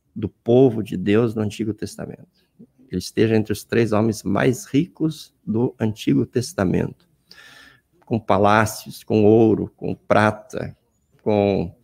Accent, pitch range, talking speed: Brazilian, 105-130 Hz, 125 wpm